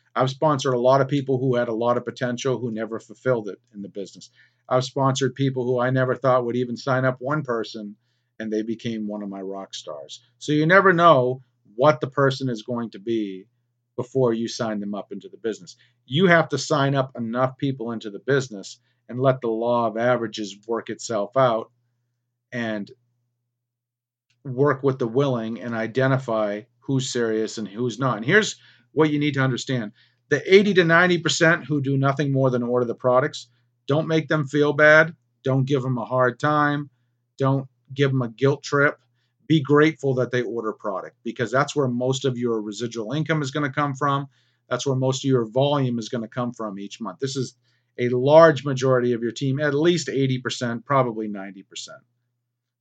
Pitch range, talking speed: 120-140 Hz, 195 wpm